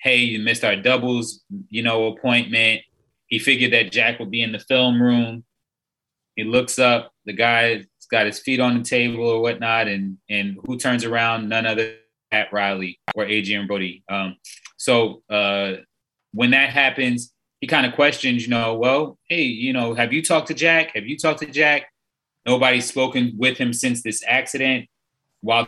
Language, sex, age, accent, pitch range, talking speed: English, male, 20-39, American, 105-125 Hz, 185 wpm